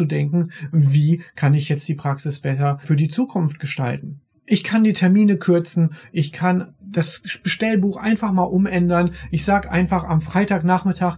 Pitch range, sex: 150-180 Hz, male